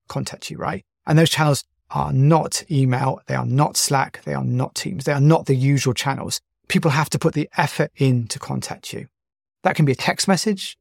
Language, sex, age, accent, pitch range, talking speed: English, male, 30-49, British, 135-165 Hz, 215 wpm